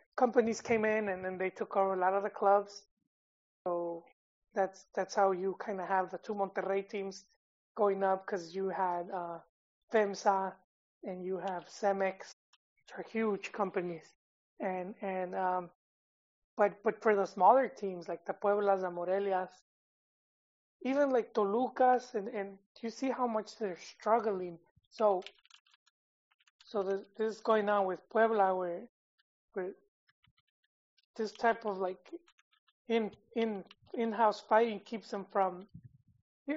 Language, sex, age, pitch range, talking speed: English, male, 20-39, 185-220 Hz, 145 wpm